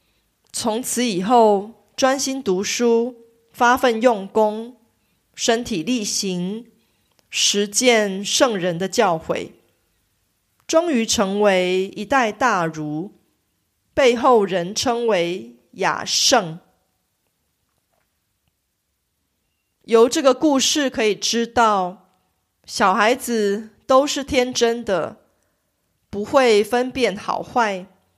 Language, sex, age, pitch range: Korean, female, 30-49, 180-240 Hz